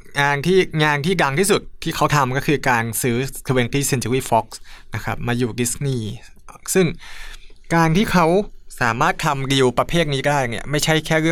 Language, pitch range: Thai, 115-145 Hz